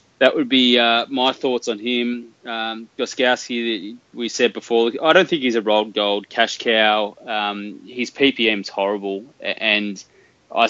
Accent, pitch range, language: Australian, 95-115 Hz, English